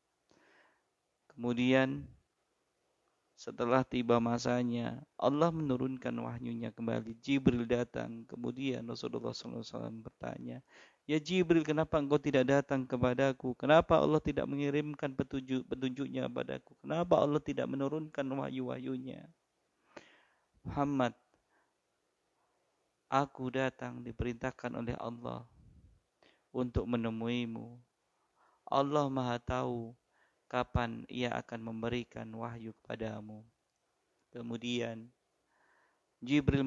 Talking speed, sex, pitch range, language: 85 wpm, male, 120-135 Hz, Indonesian